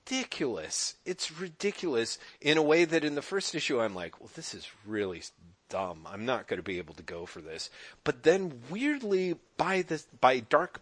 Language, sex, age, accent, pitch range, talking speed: English, male, 40-59, American, 125-190 Hz, 190 wpm